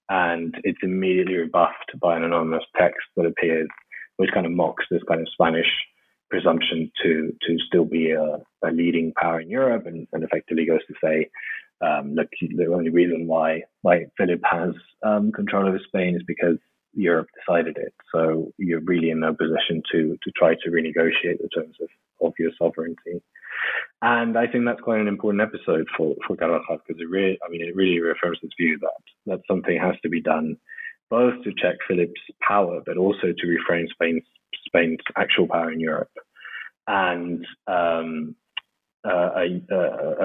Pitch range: 80-95 Hz